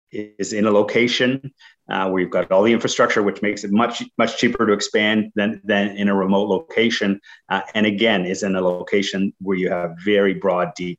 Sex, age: male, 30-49